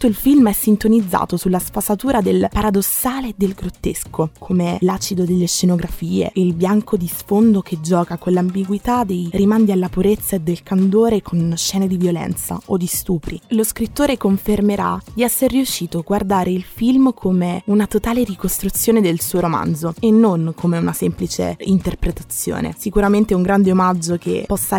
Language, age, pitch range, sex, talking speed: Italian, 20-39, 180-215 Hz, female, 160 wpm